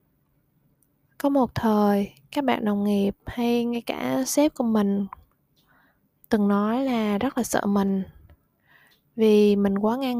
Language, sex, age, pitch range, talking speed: Vietnamese, female, 20-39, 205-245 Hz, 140 wpm